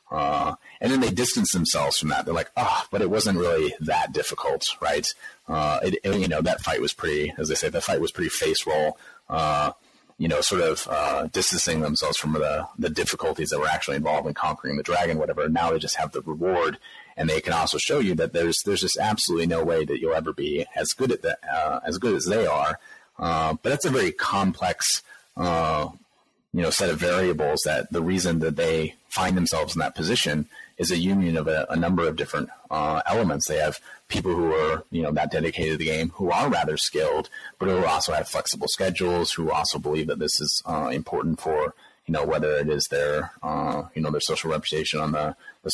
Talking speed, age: 225 wpm, 30-49